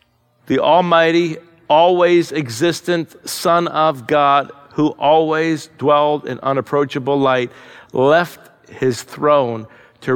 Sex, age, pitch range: male, 50-69, 125-150 Hz